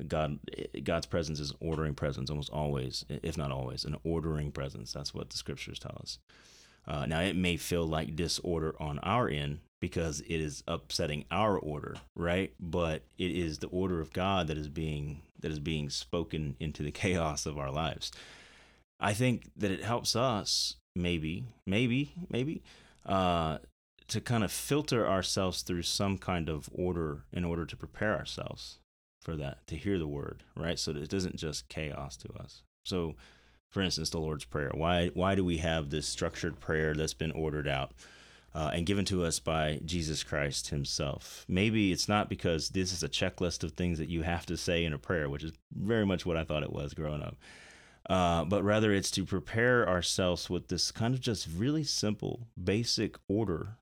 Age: 30-49